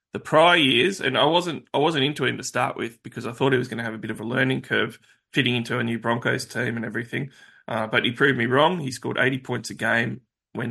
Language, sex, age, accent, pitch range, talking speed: English, male, 20-39, Australian, 110-130 Hz, 270 wpm